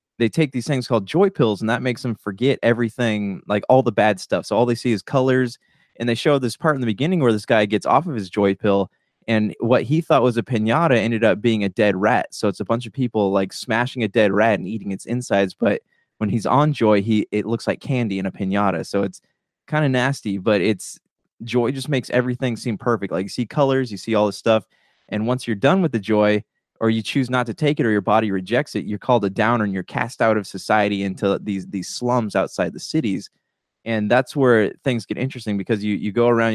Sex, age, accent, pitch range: male, 20-39, American, 105-125 Hz